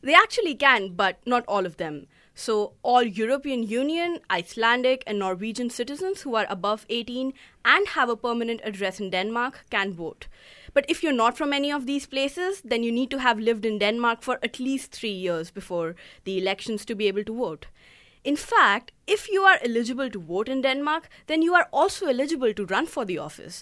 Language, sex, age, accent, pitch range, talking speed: English, female, 20-39, Indian, 205-285 Hz, 200 wpm